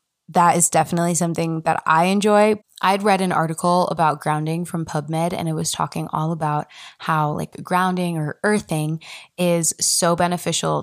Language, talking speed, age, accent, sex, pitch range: English, 160 wpm, 20-39, American, female, 160-185 Hz